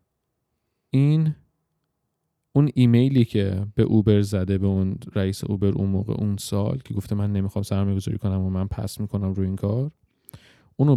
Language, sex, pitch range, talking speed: Persian, male, 100-125 Hz, 165 wpm